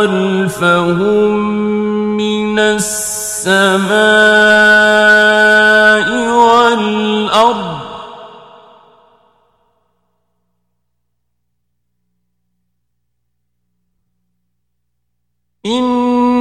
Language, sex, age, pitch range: Persian, male, 40-59, 170-230 Hz